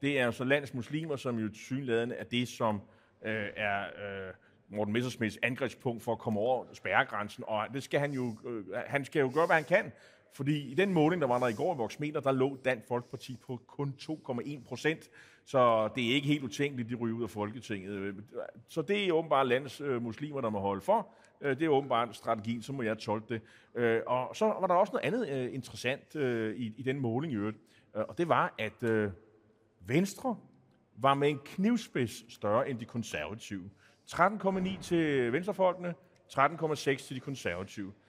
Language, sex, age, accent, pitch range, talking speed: Danish, male, 30-49, native, 115-150 Hz, 180 wpm